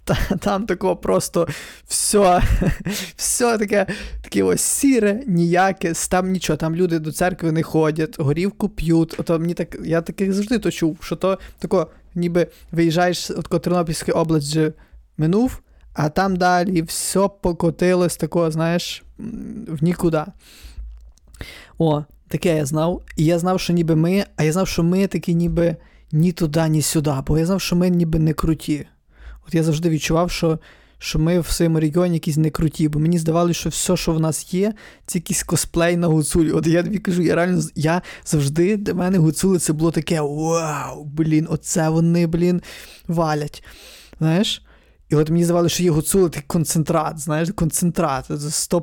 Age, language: 20-39, Ukrainian